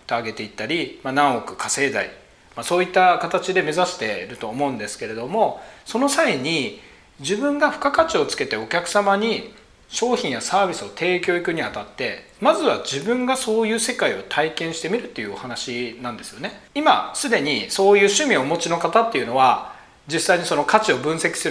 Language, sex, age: Japanese, male, 40-59